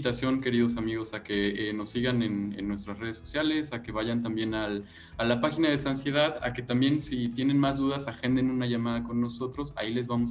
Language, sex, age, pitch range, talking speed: Spanish, male, 20-39, 105-120 Hz, 215 wpm